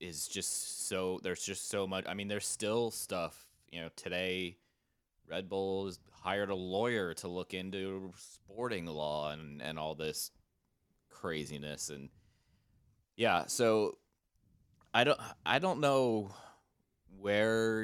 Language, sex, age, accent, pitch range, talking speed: English, male, 20-39, American, 85-105 Hz, 135 wpm